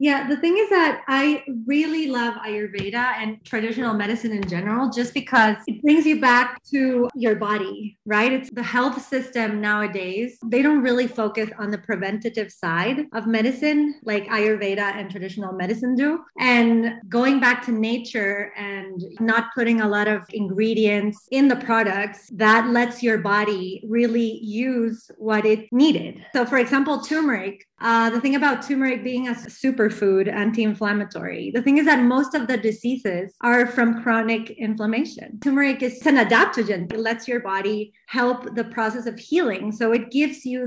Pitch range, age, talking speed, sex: 210-255 Hz, 30-49, 165 wpm, female